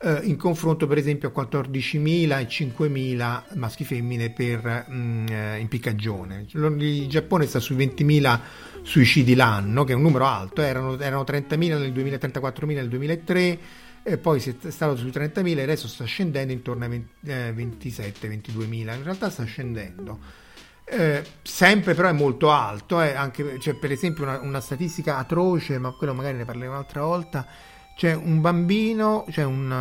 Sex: male